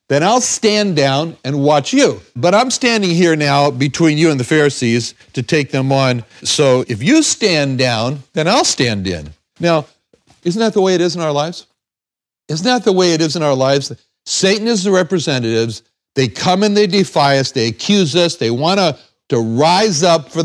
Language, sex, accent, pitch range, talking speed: English, male, American, 125-175 Hz, 200 wpm